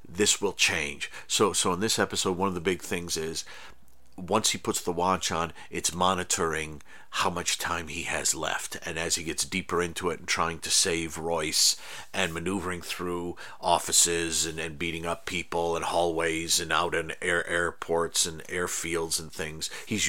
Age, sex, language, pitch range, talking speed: 50-69, male, English, 80-95 Hz, 180 wpm